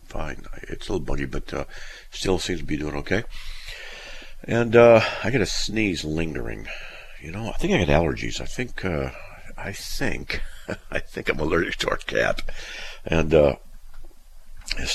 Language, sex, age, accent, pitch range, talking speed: English, male, 50-69, American, 80-100 Hz, 165 wpm